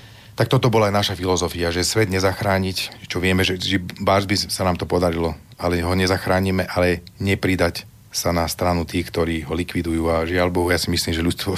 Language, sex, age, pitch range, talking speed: Slovak, male, 30-49, 85-100 Hz, 195 wpm